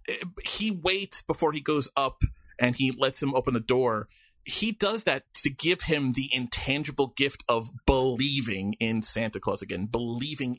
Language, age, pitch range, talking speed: English, 30-49, 110-150 Hz, 165 wpm